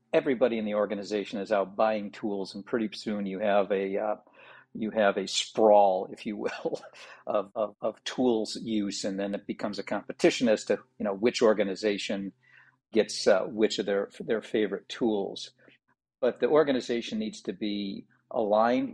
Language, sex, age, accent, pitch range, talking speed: English, male, 50-69, American, 105-125 Hz, 170 wpm